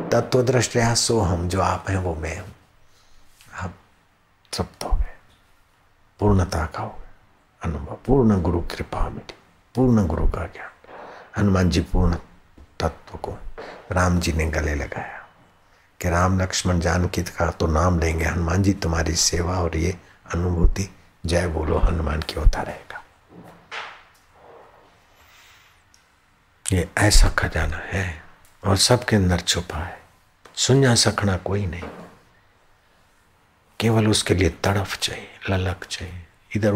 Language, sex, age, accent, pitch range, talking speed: Hindi, male, 60-79, native, 85-95 Hz, 130 wpm